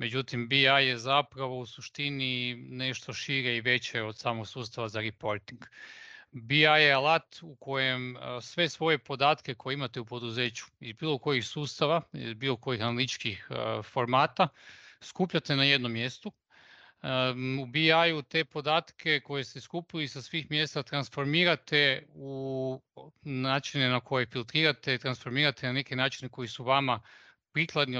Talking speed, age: 135 wpm, 30-49